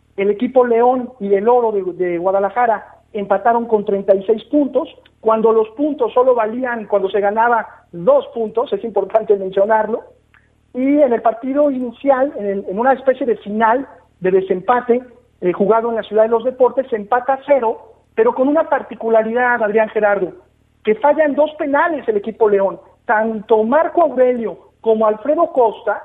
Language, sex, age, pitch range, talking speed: Spanish, male, 50-69, 215-275 Hz, 160 wpm